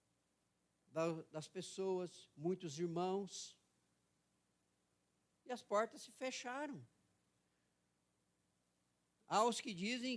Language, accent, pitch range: Portuguese, Brazilian, 130-220 Hz